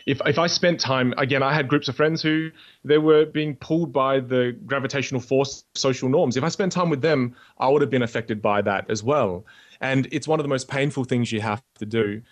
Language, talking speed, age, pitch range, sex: English, 245 wpm, 30-49, 115-145 Hz, male